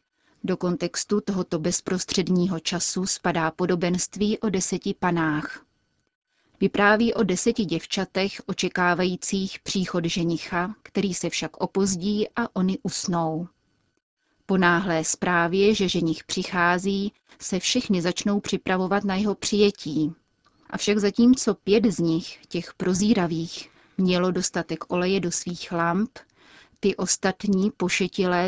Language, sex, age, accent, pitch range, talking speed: Czech, female, 30-49, native, 175-200 Hz, 115 wpm